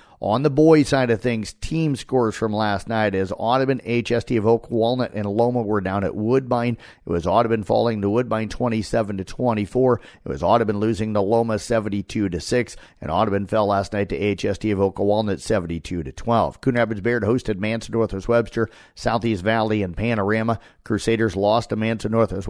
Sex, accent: male, American